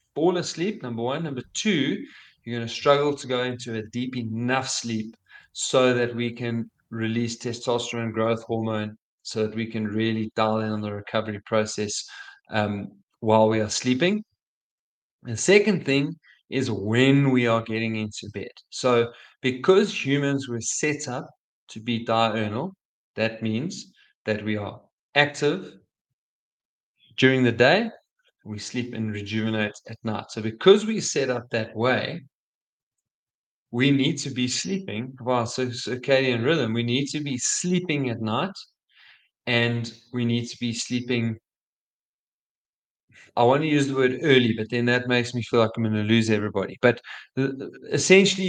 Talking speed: 155 wpm